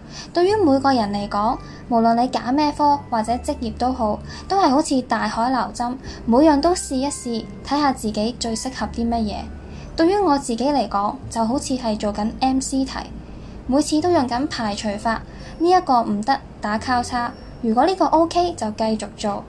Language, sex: Chinese, female